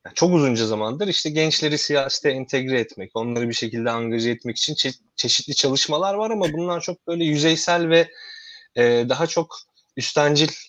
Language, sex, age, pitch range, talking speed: Turkish, male, 30-49, 110-150 Hz, 155 wpm